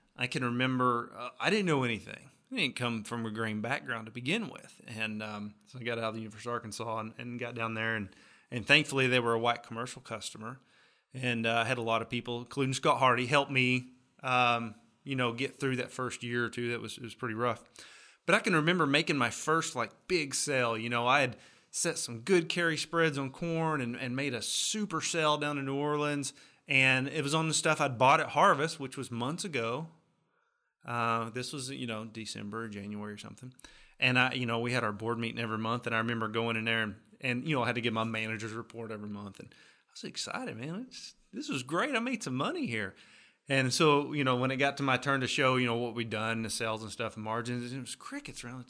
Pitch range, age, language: 115-145 Hz, 30-49, English